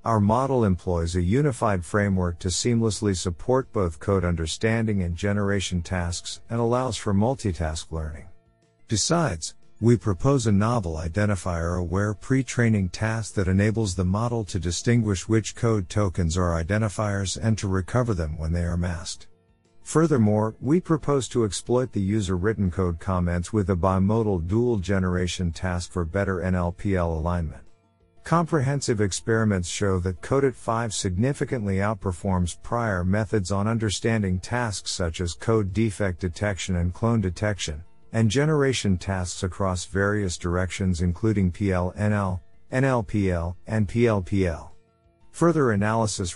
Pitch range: 90-115 Hz